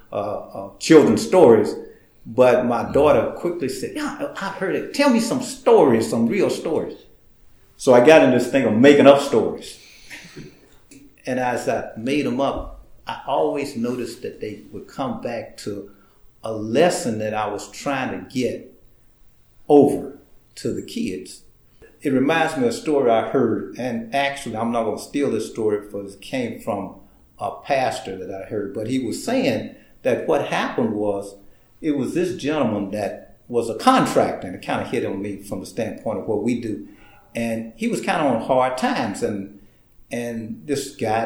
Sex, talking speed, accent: male, 180 wpm, American